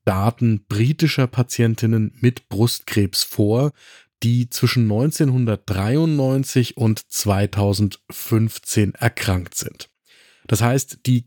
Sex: male